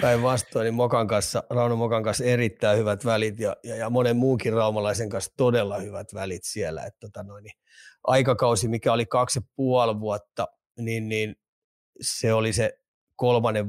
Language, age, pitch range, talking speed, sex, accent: Finnish, 30-49, 105-120 Hz, 160 wpm, male, native